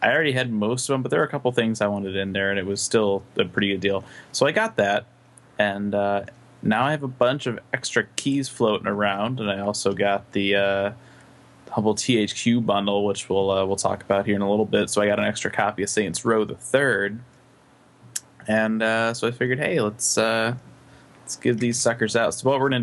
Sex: male